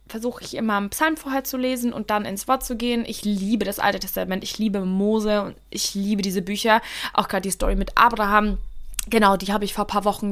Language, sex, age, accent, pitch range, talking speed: German, female, 20-39, German, 200-245 Hz, 240 wpm